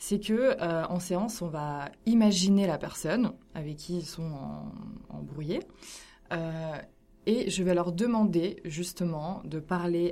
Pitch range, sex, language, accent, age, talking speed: 160-190 Hz, female, French, French, 20-39, 140 wpm